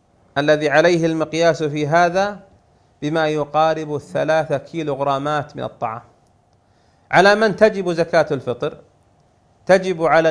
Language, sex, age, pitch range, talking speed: Arabic, male, 40-59, 140-165 Hz, 105 wpm